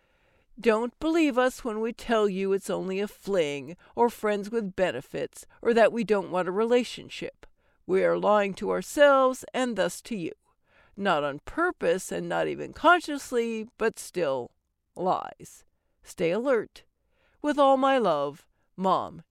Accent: American